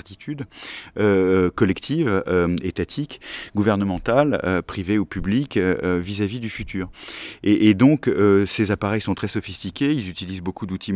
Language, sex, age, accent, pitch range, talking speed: French, male, 30-49, French, 95-110 Hz, 150 wpm